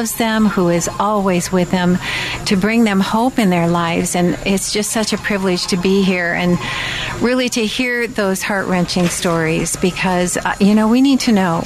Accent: American